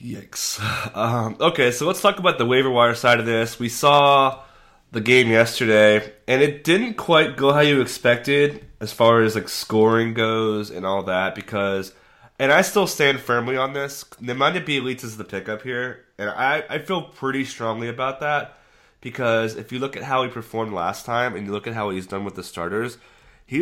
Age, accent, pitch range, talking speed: 20-39, American, 110-140 Hz, 200 wpm